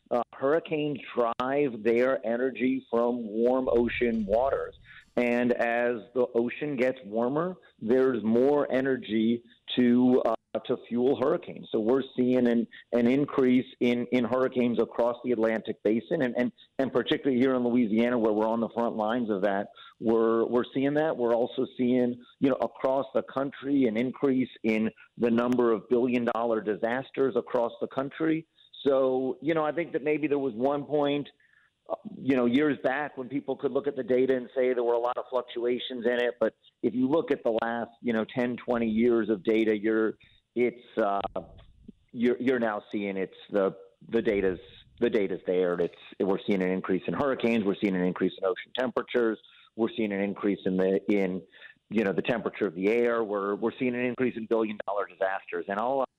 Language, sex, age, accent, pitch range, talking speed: English, male, 50-69, American, 110-130 Hz, 185 wpm